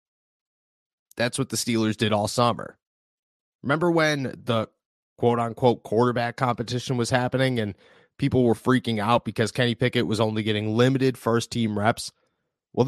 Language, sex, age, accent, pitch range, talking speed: English, male, 30-49, American, 110-135 Hz, 140 wpm